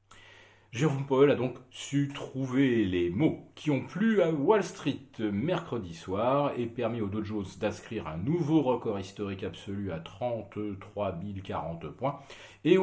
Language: French